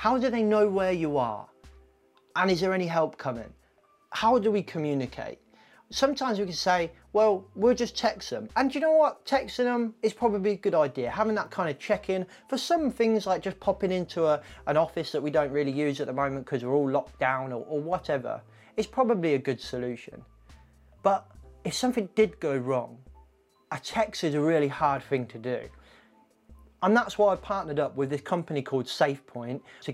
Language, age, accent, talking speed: English, 30-49, British, 200 wpm